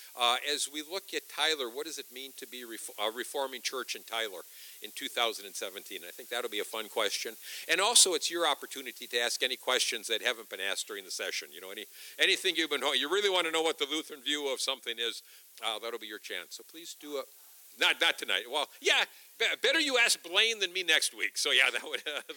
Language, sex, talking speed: English, male, 235 wpm